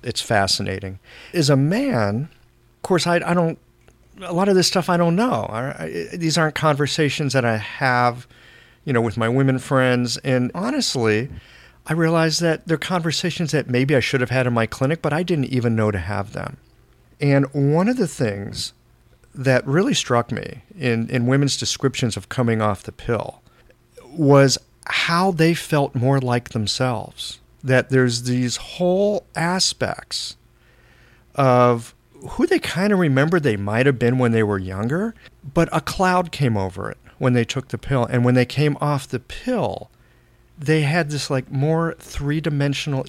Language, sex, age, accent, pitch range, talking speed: English, male, 40-59, American, 115-160 Hz, 170 wpm